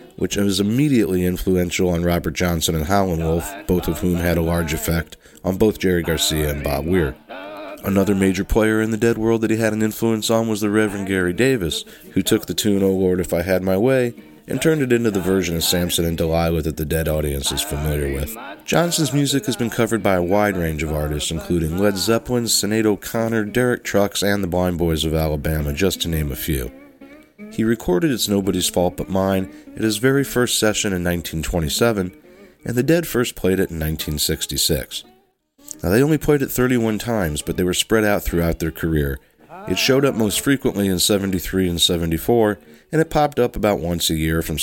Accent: American